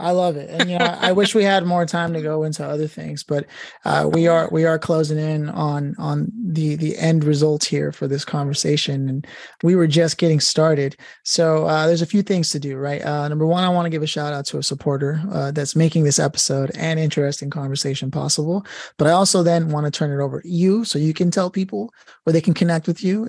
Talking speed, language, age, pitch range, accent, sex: 240 wpm, English, 30-49, 145-170 Hz, American, male